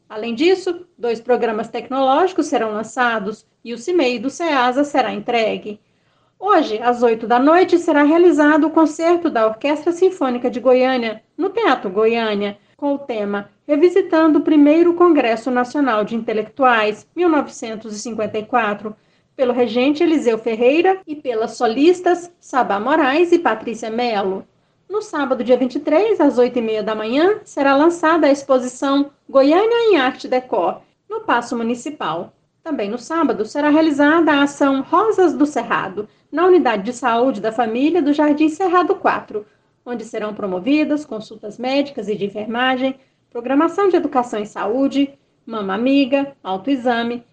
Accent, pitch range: Brazilian, 230-315 Hz